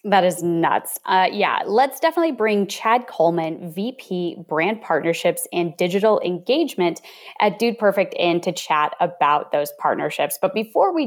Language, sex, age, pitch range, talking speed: English, female, 20-39, 175-290 Hz, 150 wpm